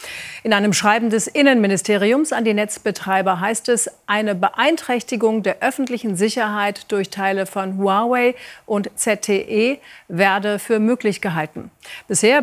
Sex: female